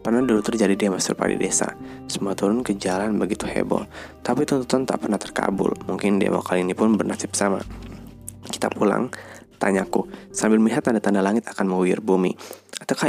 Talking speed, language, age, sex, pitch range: 165 wpm, Indonesian, 20-39, male, 95-120 Hz